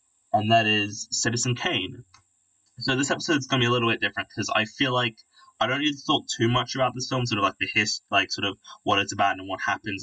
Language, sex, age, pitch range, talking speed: English, male, 10-29, 105-125 Hz, 255 wpm